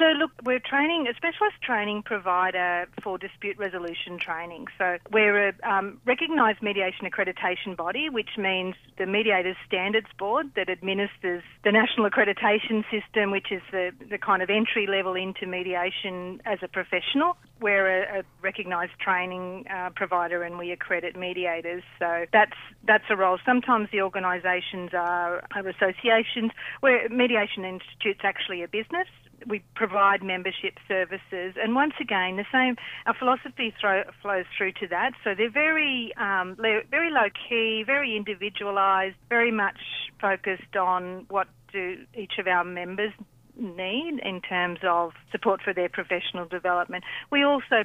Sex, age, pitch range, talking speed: female, 40-59, 180-220 Hz, 150 wpm